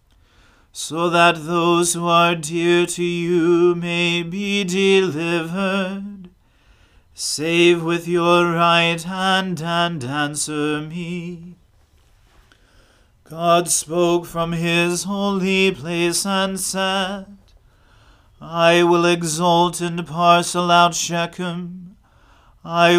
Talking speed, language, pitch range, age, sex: 90 wpm, English, 165-175 Hz, 40-59, male